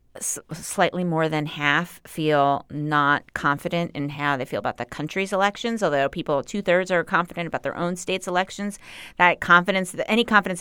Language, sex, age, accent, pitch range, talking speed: English, female, 30-49, American, 150-190 Hz, 180 wpm